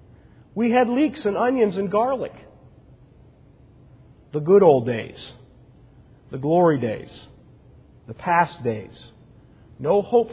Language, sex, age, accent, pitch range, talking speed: English, male, 40-59, American, 135-170 Hz, 110 wpm